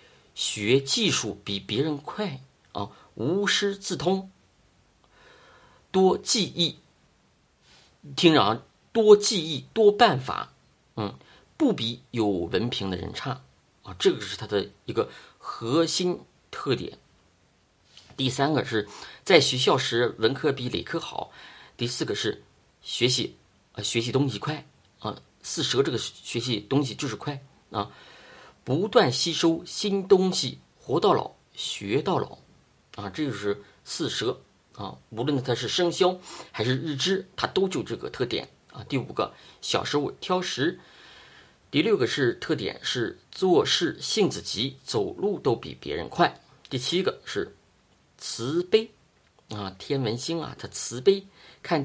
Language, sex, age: Chinese, male, 50-69